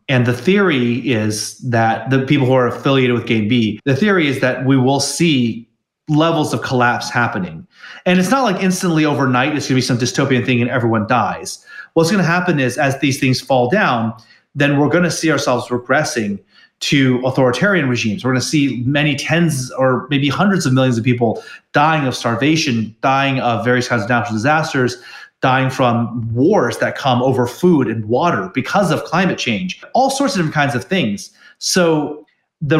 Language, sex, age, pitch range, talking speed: English, male, 30-49, 120-160 Hz, 190 wpm